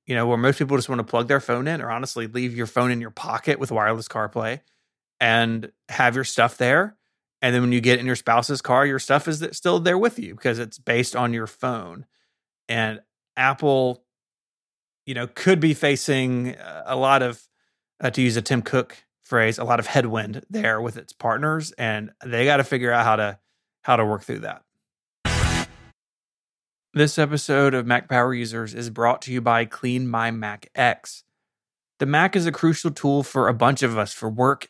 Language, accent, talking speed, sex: English, American, 200 wpm, male